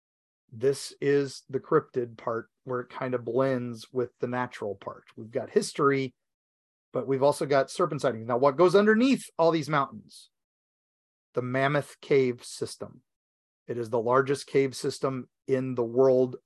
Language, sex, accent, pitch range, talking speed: English, male, American, 130-195 Hz, 155 wpm